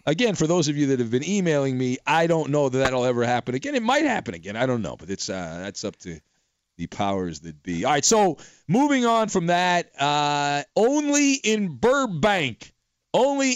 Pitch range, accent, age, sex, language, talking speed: 120-185 Hz, American, 40-59, male, English, 215 wpm